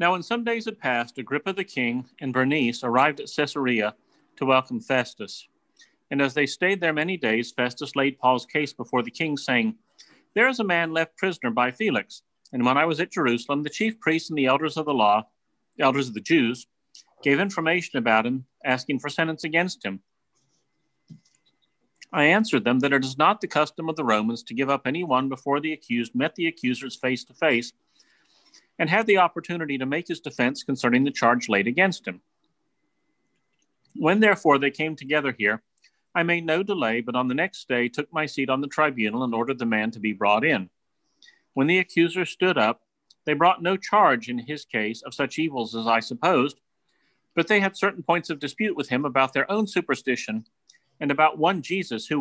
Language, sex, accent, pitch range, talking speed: English, male, American, 125-165 Hz, 200 wpm